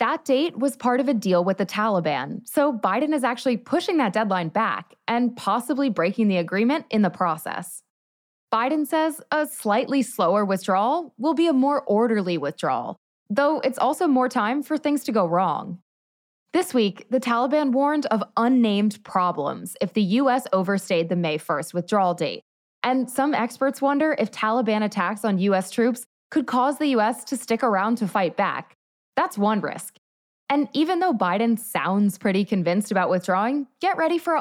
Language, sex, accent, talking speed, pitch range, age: English, female, American, 175 wpm, 190-270 Hz, 20-39